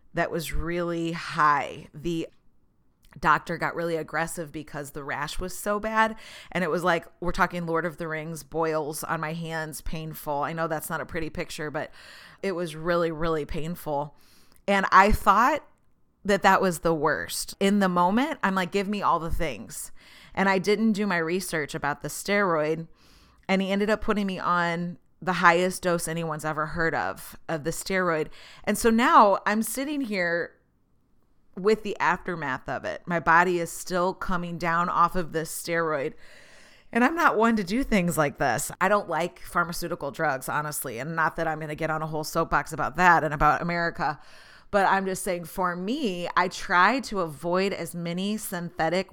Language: English